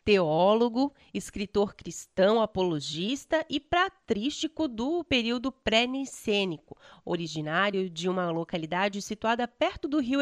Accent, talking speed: Brazilian, 100 wpm